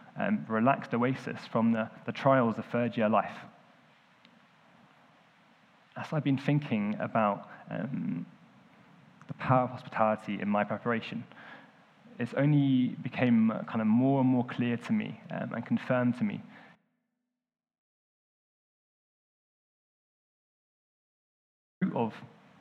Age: 20-39